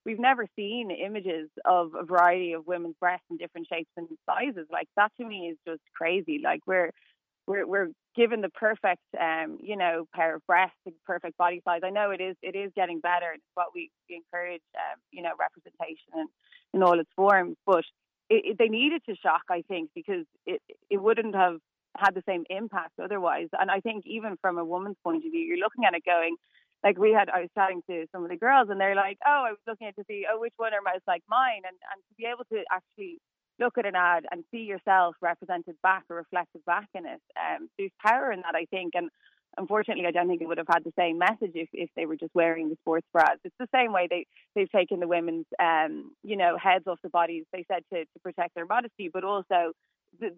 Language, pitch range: English, 170-220 Hz